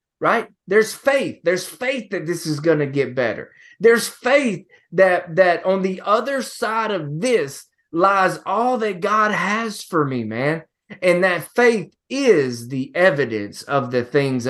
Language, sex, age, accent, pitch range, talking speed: English, male, 20-39, American, 150-210 Hz, 160 wpm